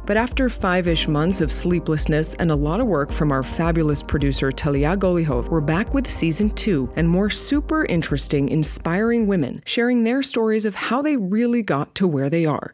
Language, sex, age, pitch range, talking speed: English, female, 30-49, 155-225 Hz, 190 wpm